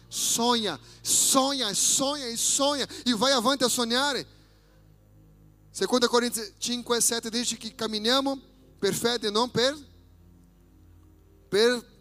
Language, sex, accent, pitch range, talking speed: Italian, male, Brazilian, 170-245 Hz, 115 wpm